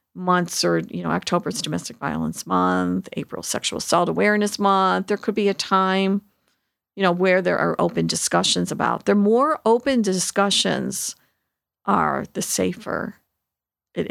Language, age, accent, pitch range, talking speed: English, 50-69, American, 175-210 Hz, 155 wpm